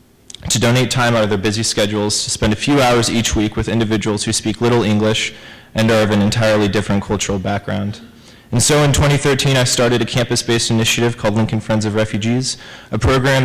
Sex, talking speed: male, 200 wpm